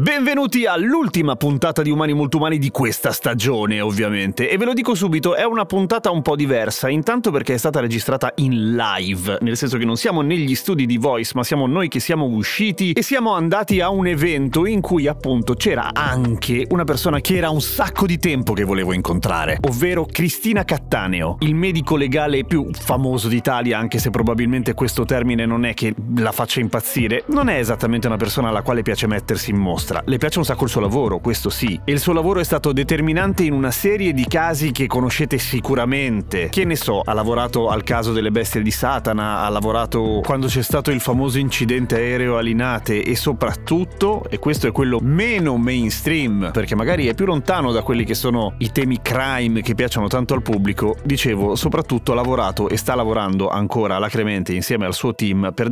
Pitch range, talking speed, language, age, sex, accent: 115-155 Hz, 195 wpm, Italian, 30-49, male, native